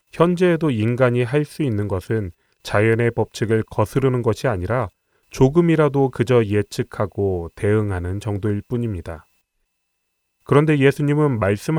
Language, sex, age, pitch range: Korean, male, 30-49, 100-140 Hz